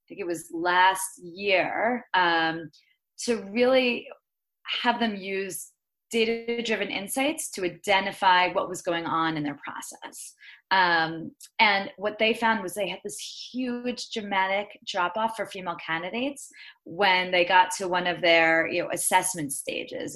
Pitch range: 170-225 Hz